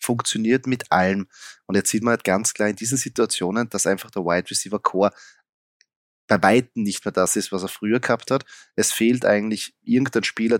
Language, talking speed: German, 200 wpm